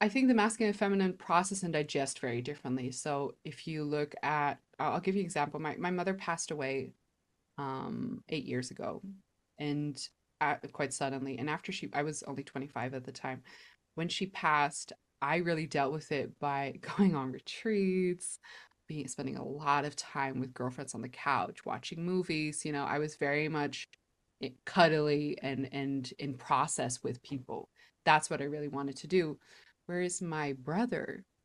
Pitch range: 140-170 Hz